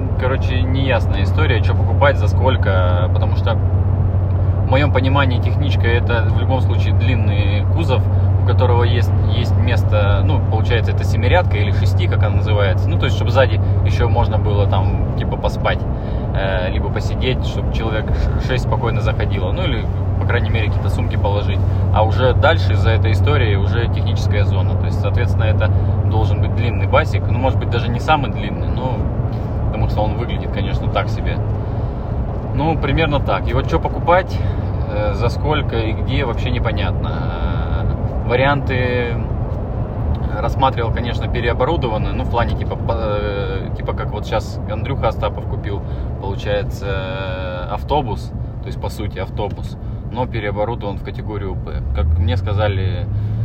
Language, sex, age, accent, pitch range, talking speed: Russian, male, 20-39, native, 95-110 Hz, 150 wpm